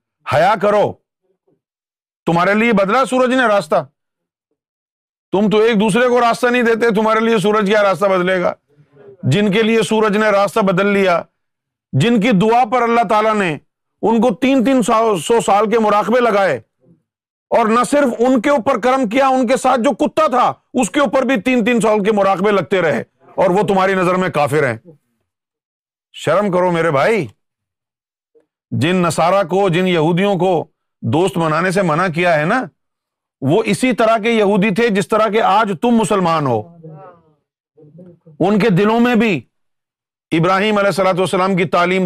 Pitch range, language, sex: 175-225 Hz, Urdu, male